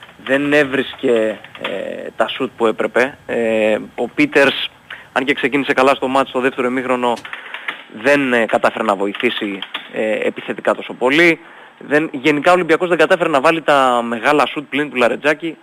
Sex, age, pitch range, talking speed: male, 20-39, 120-145 Hz, 160 wpm